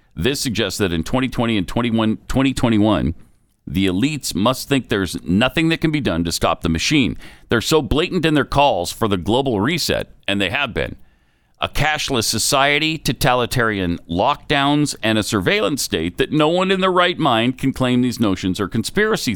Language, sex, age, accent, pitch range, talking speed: English, male, 50-69, American, 95-140 Hz, 175 wpm